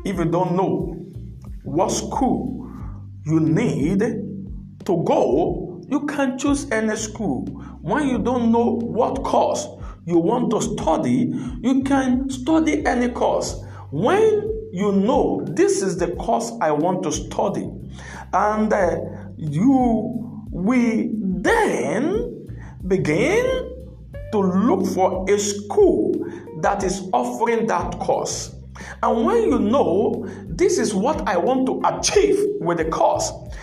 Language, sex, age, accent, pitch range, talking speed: English, male, 50-69, Nigerian, 185-275 Hz, 125 wpm